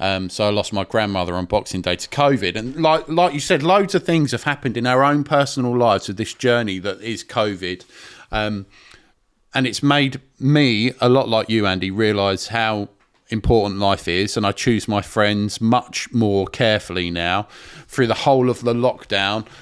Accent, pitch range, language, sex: British, 100-125 Hz, English, male